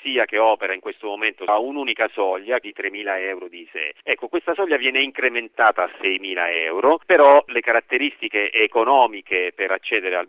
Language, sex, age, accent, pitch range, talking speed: Italian, male, 40-59, native, 100-125 Hz, 165 wpm